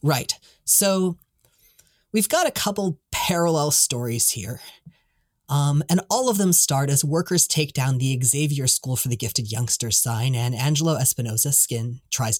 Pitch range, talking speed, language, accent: 125-165 Hz, 155 wpm, English, American